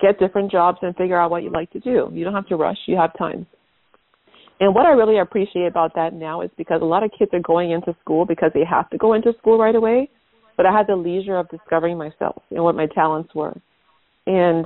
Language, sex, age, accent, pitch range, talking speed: English, female, 40-59, American, 165-195 Hz, 245 wpm